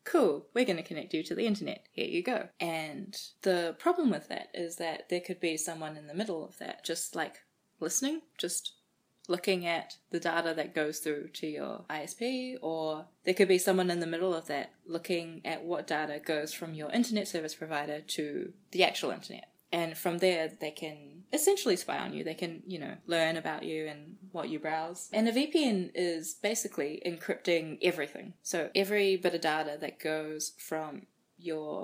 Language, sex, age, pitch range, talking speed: English, female, 20-39, 160-200 Hz, 190 wpm